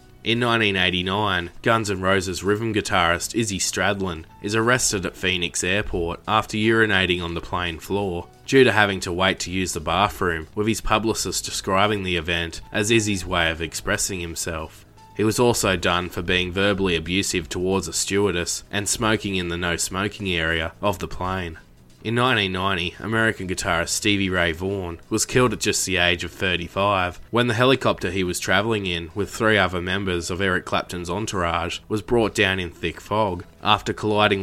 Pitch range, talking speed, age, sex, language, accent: 85-105 Hz, 175 wpm, 20-39, male, English, Australian